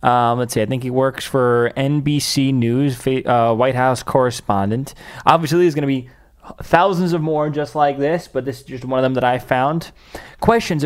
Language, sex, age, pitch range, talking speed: English, male, 20-39, 120-155 Hz, 200 wpm